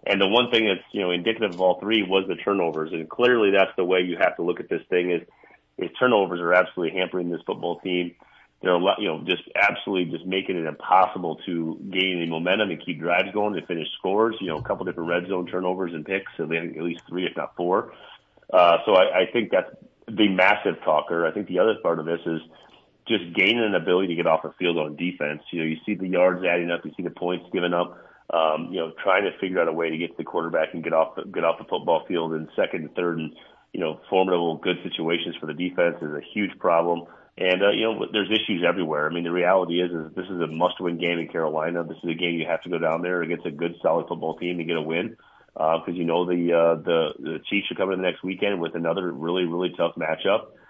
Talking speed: 260 wpm